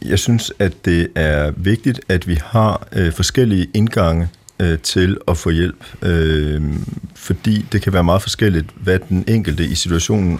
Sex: male